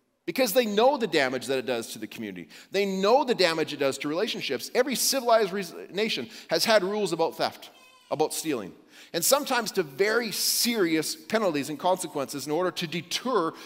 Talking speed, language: 180 wpm, English